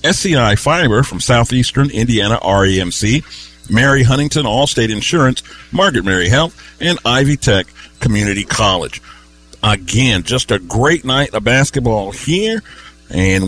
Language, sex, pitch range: English, male, 105-145 Hz